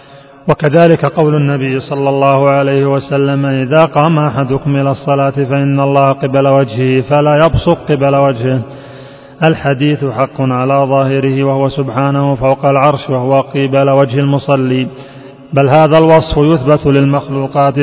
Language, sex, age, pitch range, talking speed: Arabic, male, 30-49, 135-150 Hz, 125 wpm